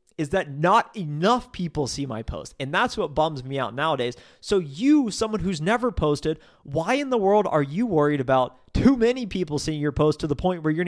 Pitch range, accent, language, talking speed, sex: 145-190 Hz, American, English, 220 wpm, male